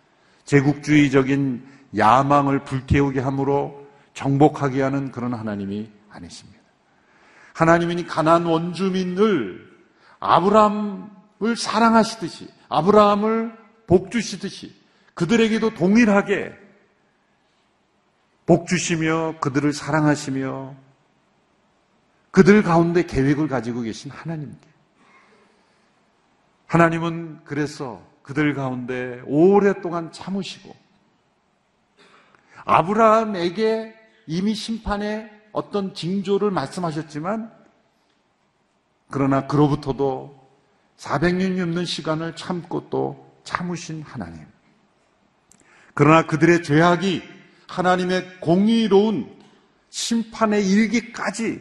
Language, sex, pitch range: Korean, male, 140-205 Hz